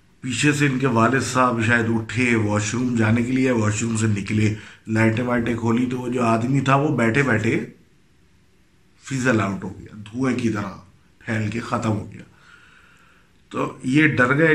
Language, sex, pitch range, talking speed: Urdu, male, 110-125 Hz, 180 wpm